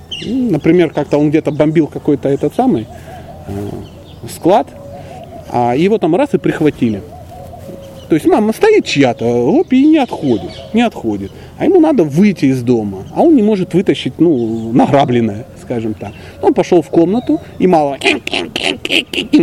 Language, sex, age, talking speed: Russian, male, 30-49, 145 wpm